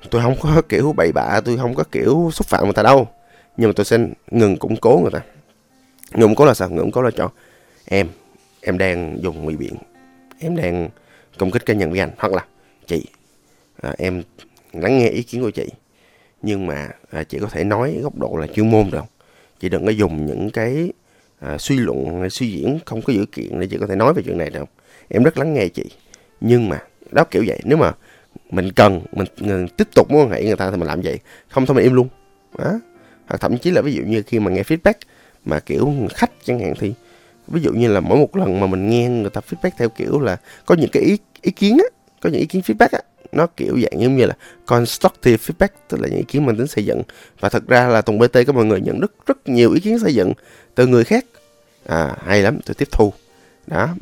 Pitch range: 95-135 Hz